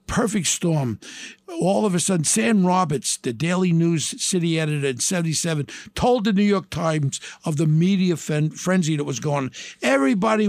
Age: 60-79